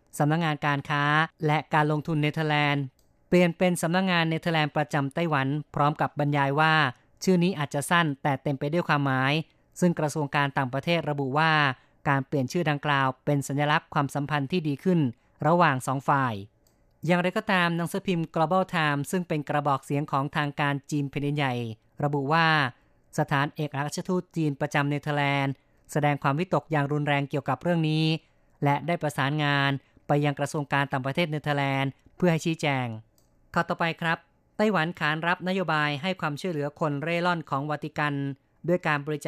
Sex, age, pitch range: female, 20-39, 140-160 Hz